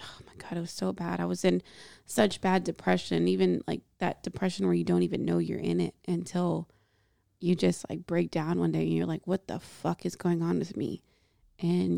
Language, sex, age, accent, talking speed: English, female, 20-39, American, 225 wpm